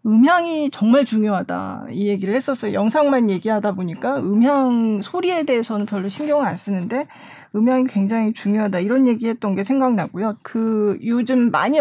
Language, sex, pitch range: Korean, female, 205-265 Hz